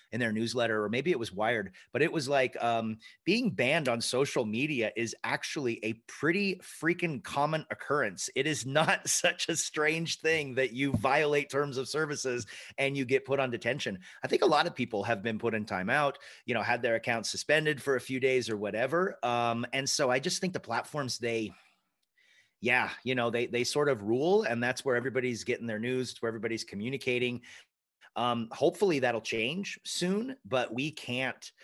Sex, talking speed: male, 195 wpm